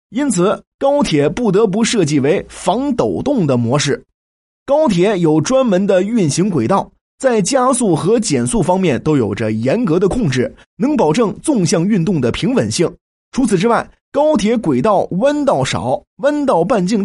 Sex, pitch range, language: male, 160-255 Hz, Chinese